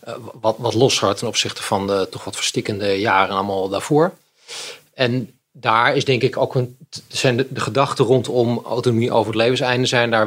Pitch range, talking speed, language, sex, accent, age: 105-130 Hz, 185 wpm, Dutch, male, Dutch, 40-59